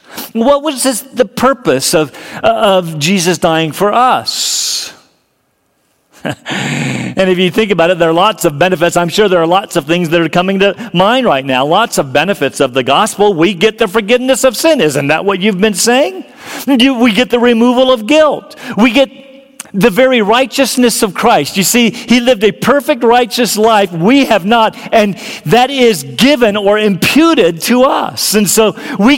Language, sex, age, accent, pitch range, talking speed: English, male, 50-69, American, 195-260 Hz, 185 wpm